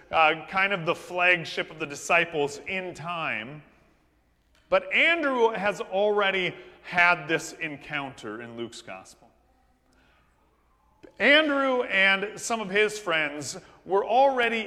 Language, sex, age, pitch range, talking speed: English, male, 40-59, 160-225 Hz, 115 wpm